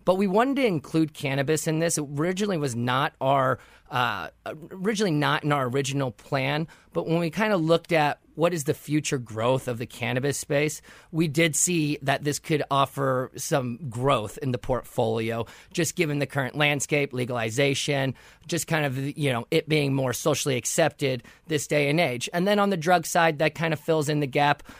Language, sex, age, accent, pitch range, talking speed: English, male, 30-49, American, 140-165 Hz, 195 wpm